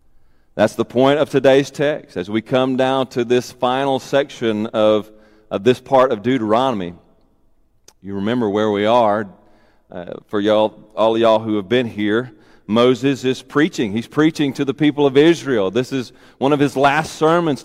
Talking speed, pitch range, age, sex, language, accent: 175 wpm, 110-145 Hz, 40-59, male, English, American